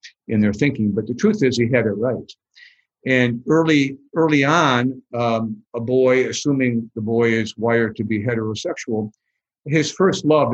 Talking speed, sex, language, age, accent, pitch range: 165 wpm, male, English, 50-69, American, 115-160 Hz